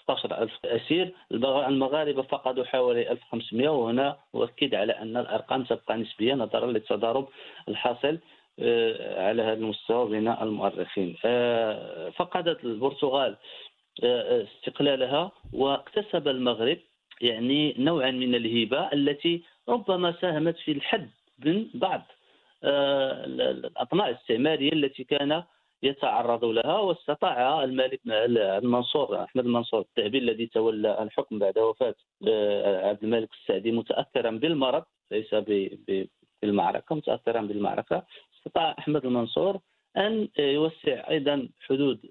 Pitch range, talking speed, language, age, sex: 115-155 Hz, 100 wpm, Arabic, 40-59, male